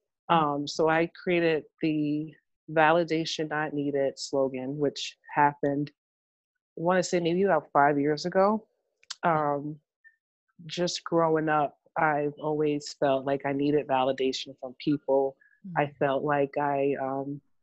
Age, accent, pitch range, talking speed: 30-49, American, 150-175 Hz, 130 wpm